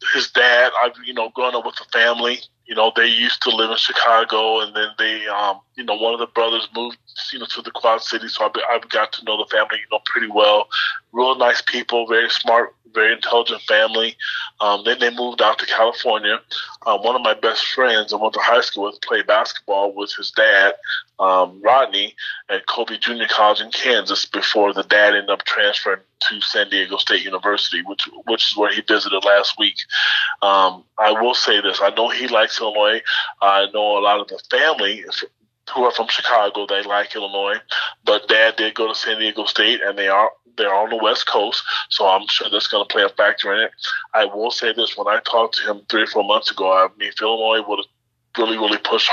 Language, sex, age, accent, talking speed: English, male, 20-39, American, 220 wpm